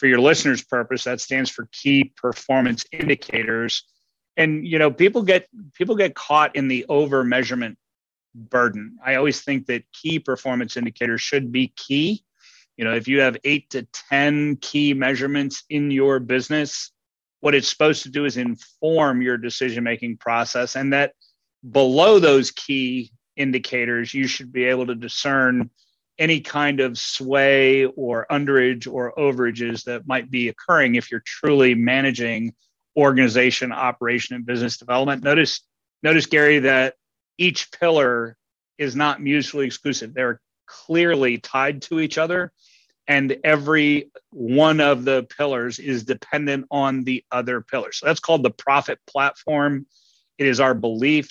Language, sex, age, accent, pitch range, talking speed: English, male, 30-49, American, 125-145 Hz, 145 wpm